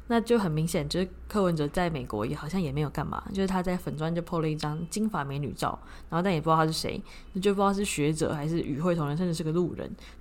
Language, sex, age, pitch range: Chinese, female, 20-39, 155-195 Hz